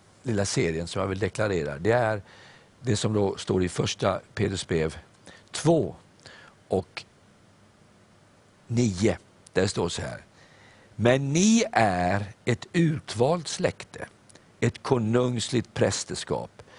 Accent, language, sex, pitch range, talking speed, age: native, Swedish, male, 95-130 Hz, 115 wpm, 50-69